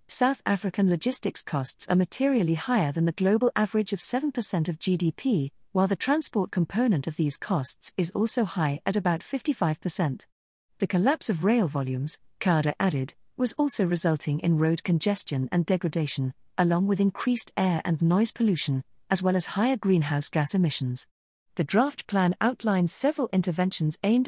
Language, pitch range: English, 165-215 Hz